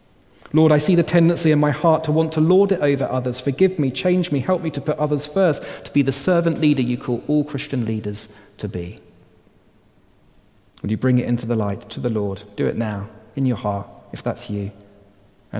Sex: male